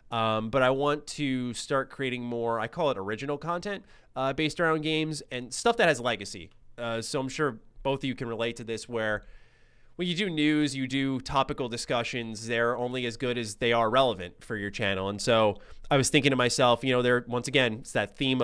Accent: American